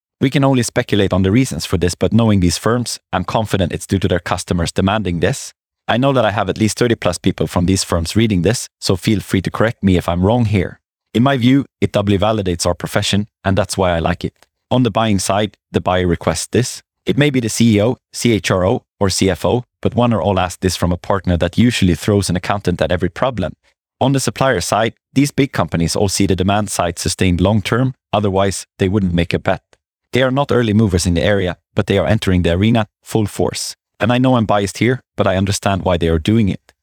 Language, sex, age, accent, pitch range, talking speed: English, male, 30-49, Swedish, 90-115 Hz, 235 wpm